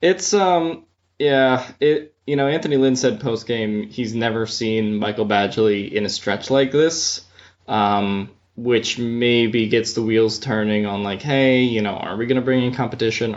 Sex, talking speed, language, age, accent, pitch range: male, 175 wpm, English, 20-39, American, 100-125 Hz